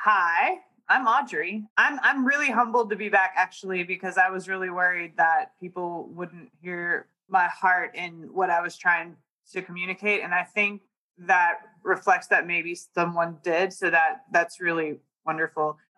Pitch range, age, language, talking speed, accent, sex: 170-200 Hz, 20-39, English, 160 wpm, American, female